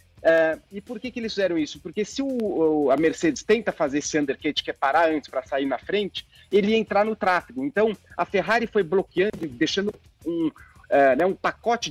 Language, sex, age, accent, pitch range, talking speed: Portuguese, male, 40-59, Brazilian, 165-215 Hz, 190 wpm